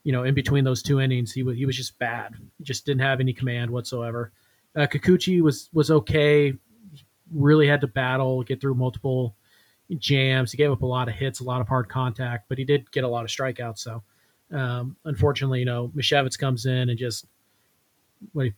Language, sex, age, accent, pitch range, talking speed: English, male, 30-49, American, 120-145 Hz, 210 wpm